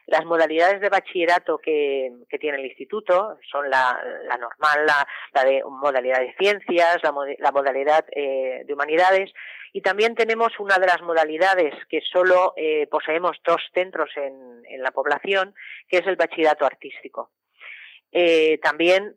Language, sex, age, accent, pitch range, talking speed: English, female, 40-59, Spanish, 145-185 Hz, 155 wpm